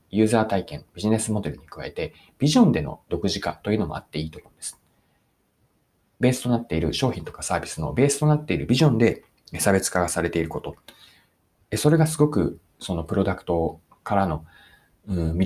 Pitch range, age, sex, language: 90-145 Hz, 40-59, male, Japanese